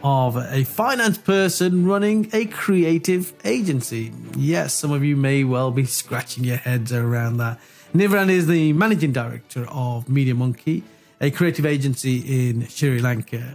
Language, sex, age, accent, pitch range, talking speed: English, male, 40-59, British, 125-165 Hz, 150 wpm